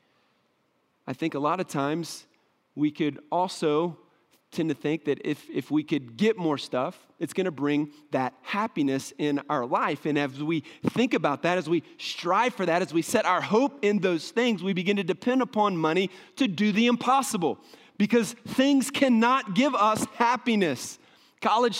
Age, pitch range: 30-49, 165-240 Hz